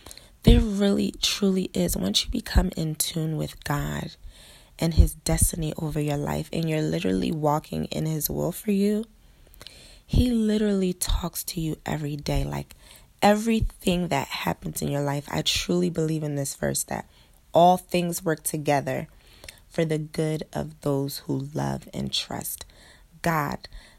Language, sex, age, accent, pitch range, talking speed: English, female, 20-39, American, 140-195 Hz, 155 wpm